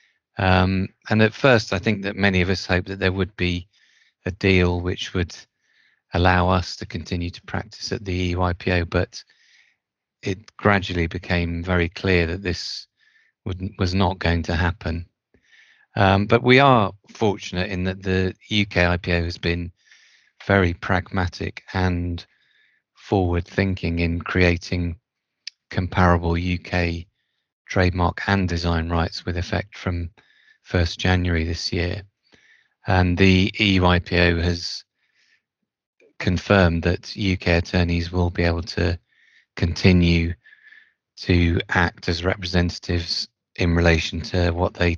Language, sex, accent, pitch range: English, male, British, 85-95 Hz